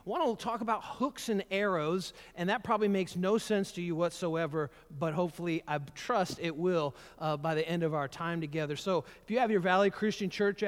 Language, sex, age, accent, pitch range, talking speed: English, male, 40-59, American, 160-205 Hz, 220 wpm